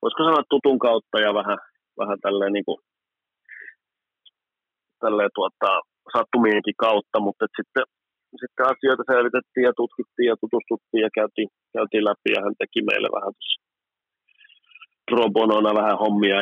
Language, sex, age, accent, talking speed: Finnish, male, 40-59, native, 125 wpm